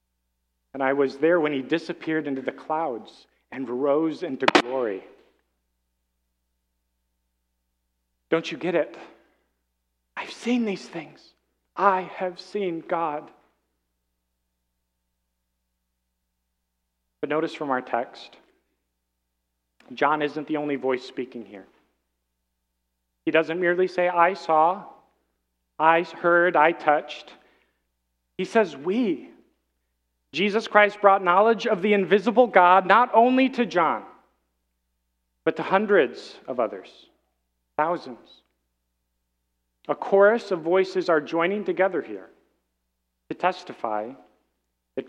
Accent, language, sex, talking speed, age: American, English, male, 105 wpm, 40-59